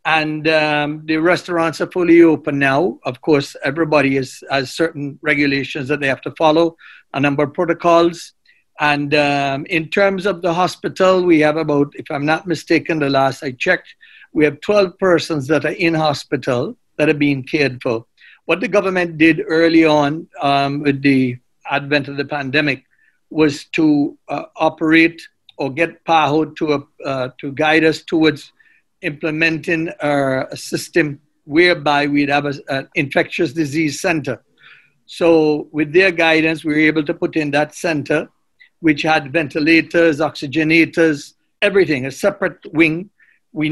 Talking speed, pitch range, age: 155 wpm, 145-170 Hz, 60-79